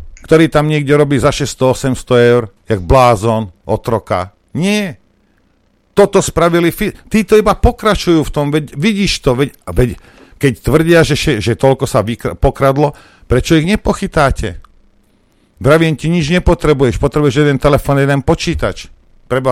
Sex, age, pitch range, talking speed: male, 50-69, 125-175 Hz, 130 wpm